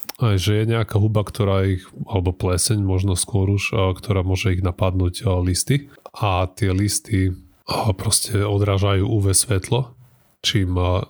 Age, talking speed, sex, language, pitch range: 20-39, 135 wpm, male, Slovak, 95-105 Hz